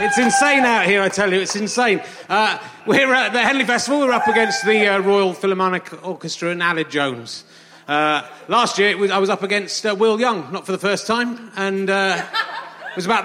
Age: 30-49